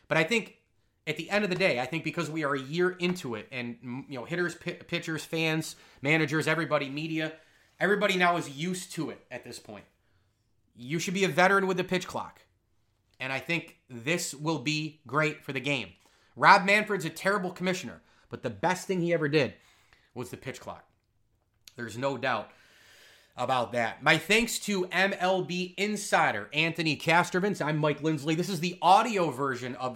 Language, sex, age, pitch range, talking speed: English, male, 30-49, 130-170 Hz, 185 wpm